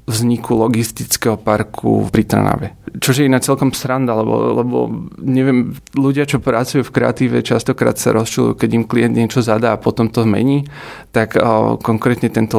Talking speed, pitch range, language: 160 wpm, 110-130 Hz, Slovak